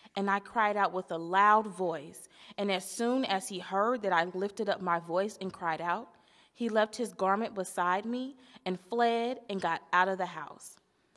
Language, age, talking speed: English, 20-39, 200 wpm